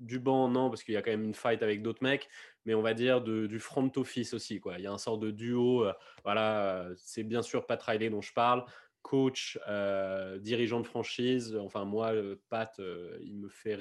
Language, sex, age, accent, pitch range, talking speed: French, male, 20-39, French, 105-120 Hz, 230 wpm